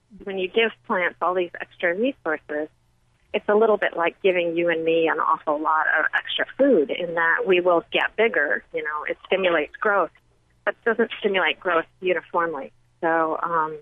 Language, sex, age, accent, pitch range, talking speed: English, female, 40-59, American, 160-190 Hz, 180 wpm